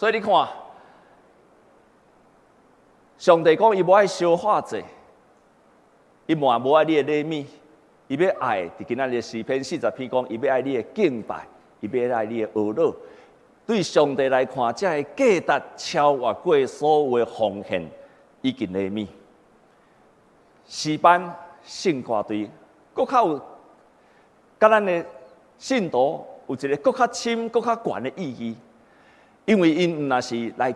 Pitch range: 130-220 Hz